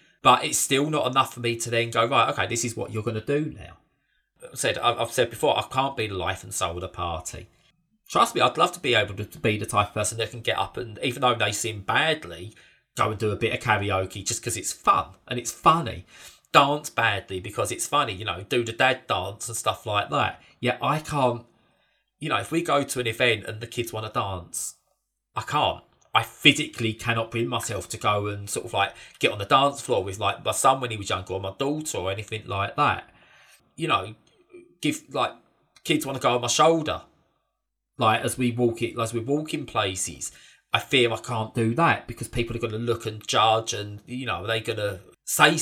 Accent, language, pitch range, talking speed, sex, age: British, English, 105-130 Hz, 235 wpm, male, 30-49